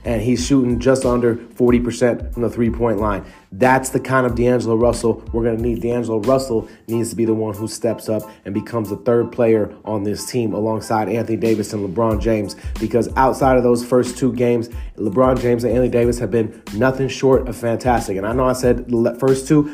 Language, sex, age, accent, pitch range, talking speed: English, male, 30-49, American, 115-130 Hz, 215 wpm